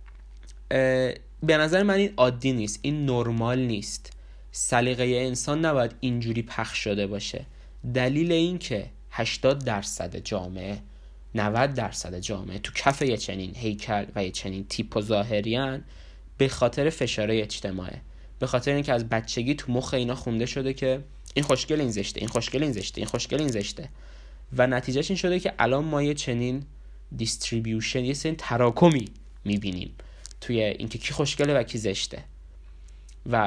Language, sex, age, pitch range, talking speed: Persian, male, 20-39, 105-135 Hz, 150 wpm